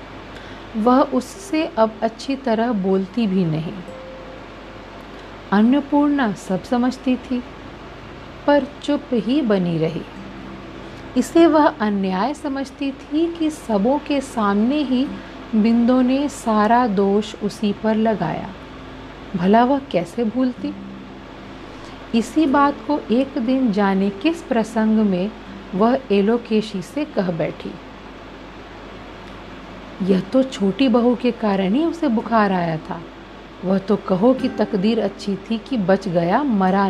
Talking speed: 120 wpm